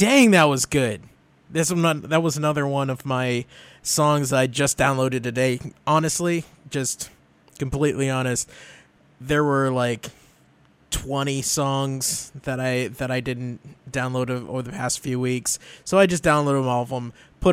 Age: 20-39